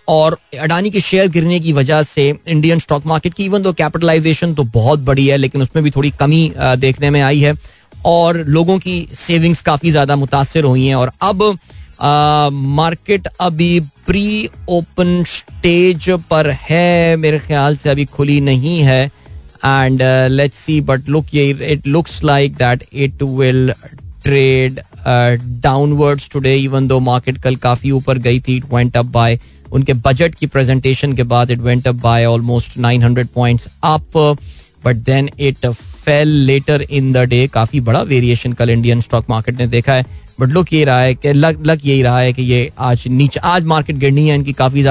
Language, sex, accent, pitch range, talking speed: Hindi, male, native, 125-160 Hz, 140 wpm